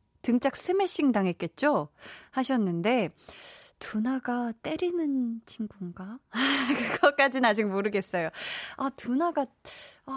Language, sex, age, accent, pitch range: Korean, female, 20-39, native, 205-285 Hz